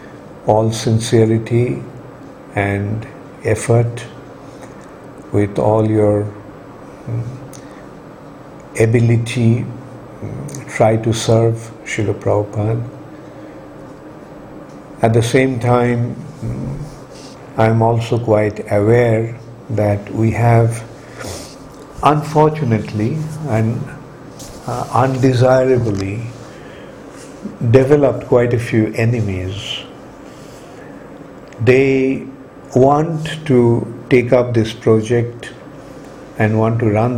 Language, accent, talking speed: English, Indian, 70 wpm